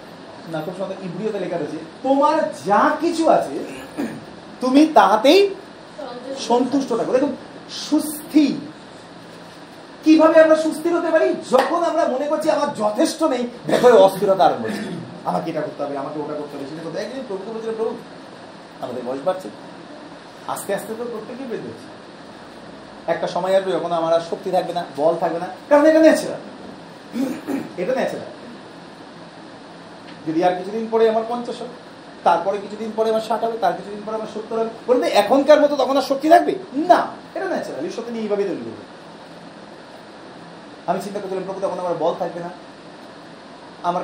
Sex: male